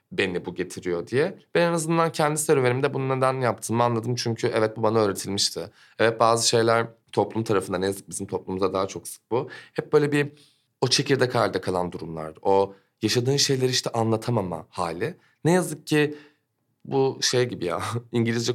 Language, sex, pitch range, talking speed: Turkish, male, 110-140 Hz, 170 wpm